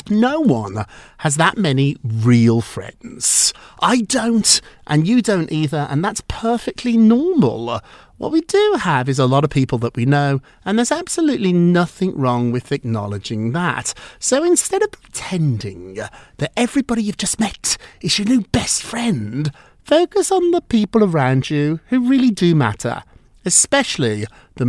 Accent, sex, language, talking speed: British, male, English, 155 wpm